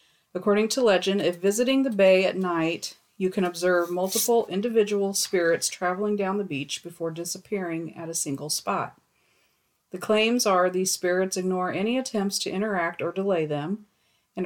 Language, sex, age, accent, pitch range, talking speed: English, female, 40-59, American, 170-205 Hz, 160 wpm